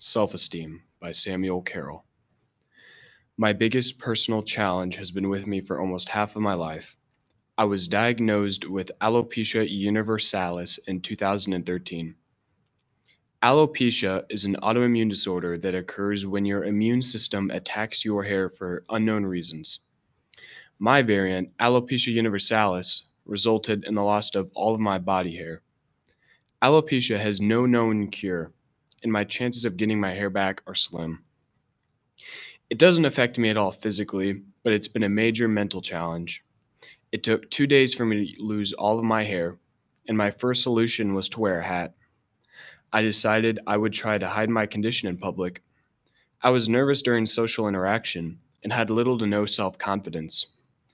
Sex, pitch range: male, 95-115 Hz